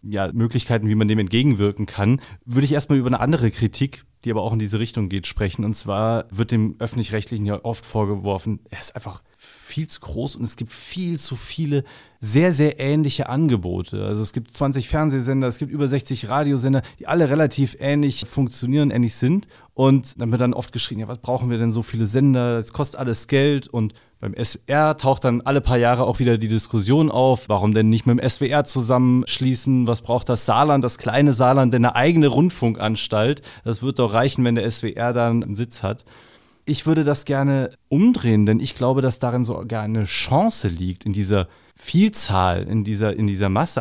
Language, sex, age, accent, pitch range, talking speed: German, male, 30-49, German, 110-140 Hz, 200 wpm